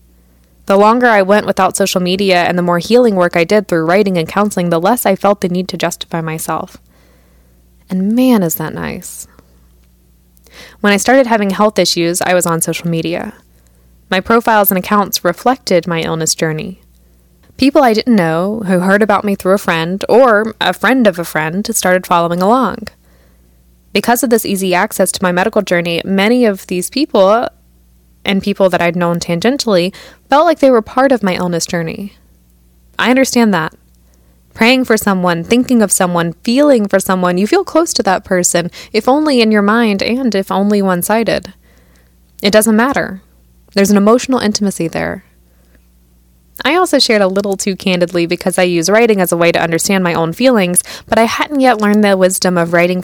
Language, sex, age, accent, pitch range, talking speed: English, female, 20-39, American, 165-210 Hz, 185 wpm